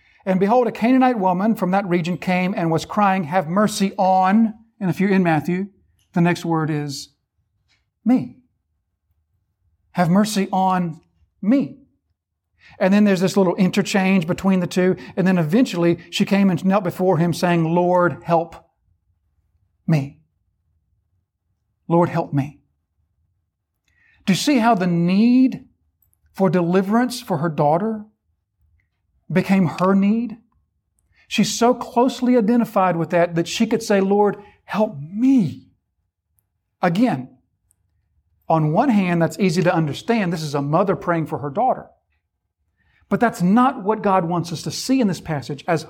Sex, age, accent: male, 50-69, American